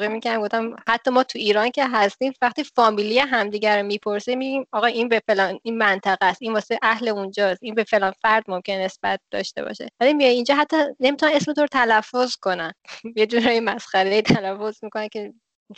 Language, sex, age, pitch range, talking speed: Persian, female, 20-39, 195-235 Hz, 185 wpm